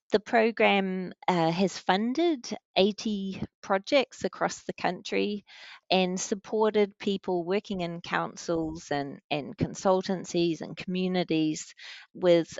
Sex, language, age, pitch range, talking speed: female, English, 30-49, 160-205 Hz, 100 wpm